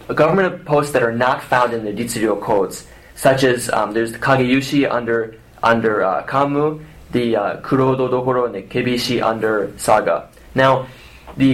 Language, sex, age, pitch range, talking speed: English, male, 20-39, 115-135 Hz, 165 wpm